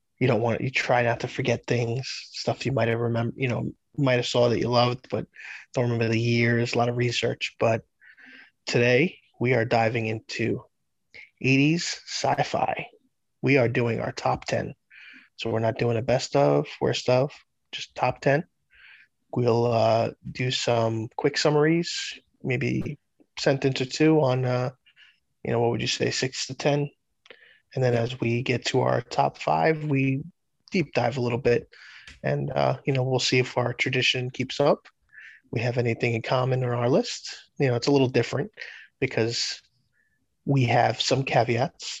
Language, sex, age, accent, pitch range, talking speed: English, male, 20-39, American, 120-135 Hz, 175 wpm